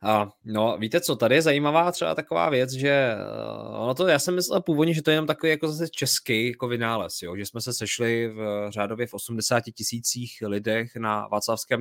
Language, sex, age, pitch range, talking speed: Czech, male, 20-39, 110-135 Hz, 190 wpm